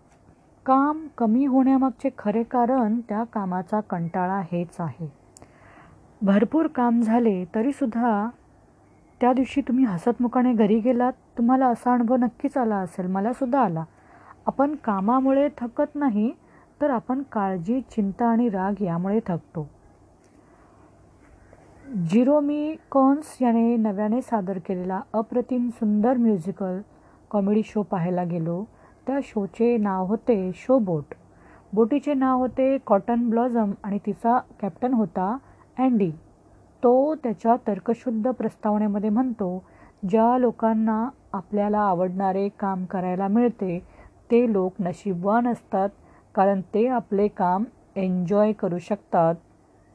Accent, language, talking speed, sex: native, Marathi, 110 wpm, female